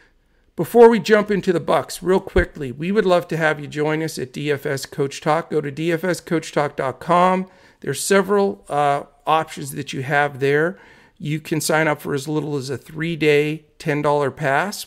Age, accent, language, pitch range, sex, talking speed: 50-69, American, English, 135-155 Hz, male, 175 wpm